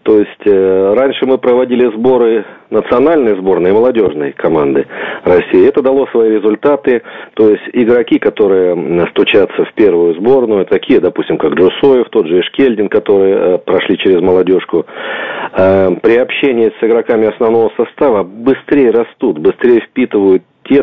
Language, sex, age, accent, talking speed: Russian, male, 40-59, native, 140 wpm